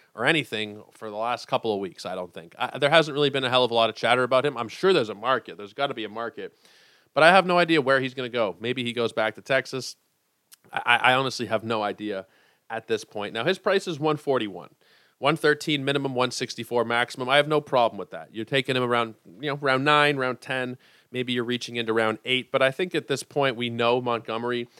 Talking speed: 255 wpm